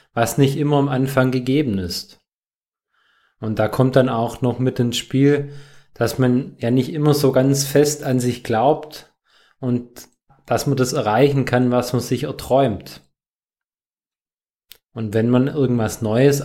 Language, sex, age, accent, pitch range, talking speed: German, male, 20-39, German, 115-135 Hz, 155 wpm